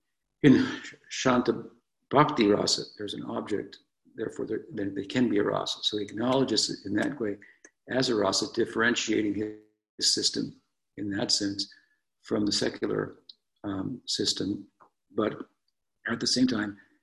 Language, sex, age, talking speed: English, male, 60-79, 145 wpm